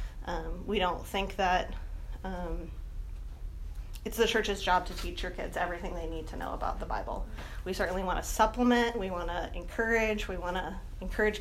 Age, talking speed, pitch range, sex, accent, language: 20-39, 185 wpm, 180-210 Hz, female, American, English